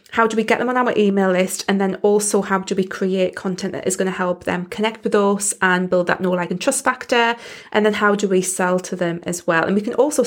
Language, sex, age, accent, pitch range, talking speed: English, female, 20-39, British, 185-215 Hz, 280 wpm